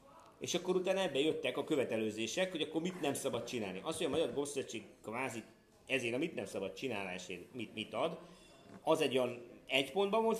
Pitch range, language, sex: 110-170 Hz, Hungarian, male